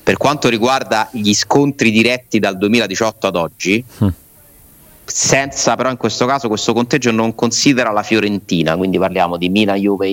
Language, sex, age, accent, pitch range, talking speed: Italian, male, 30-49, native, 95-125 Hz, 155 wpm